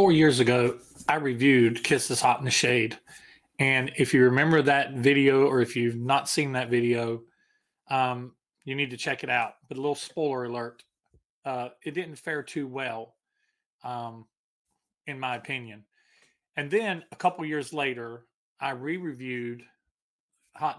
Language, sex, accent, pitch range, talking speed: English, male, American, 125-150 Hz, 160 wpm